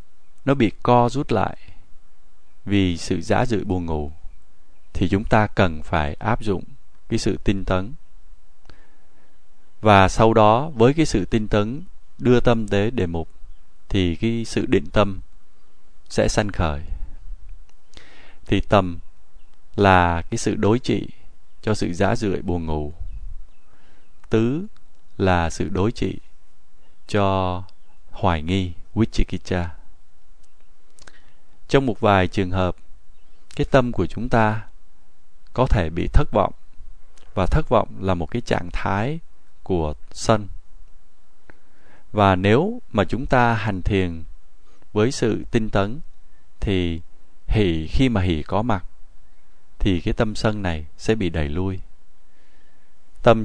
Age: 20-39